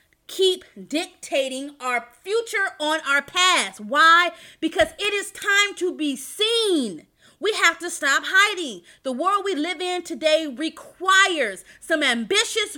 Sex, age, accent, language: female, 30-49, American, English